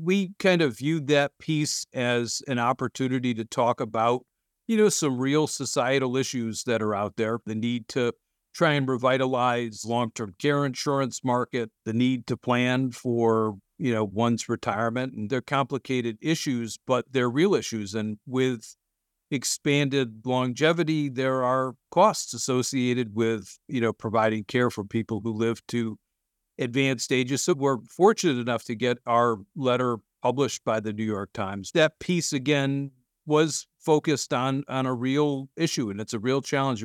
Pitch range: 115-140 Hz